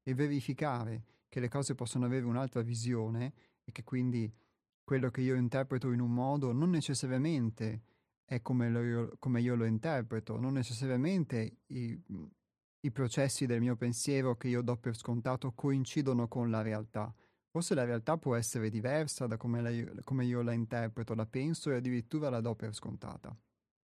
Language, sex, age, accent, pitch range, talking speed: Italian, male, 30-49, native, 115-135 Hz, 160 wpm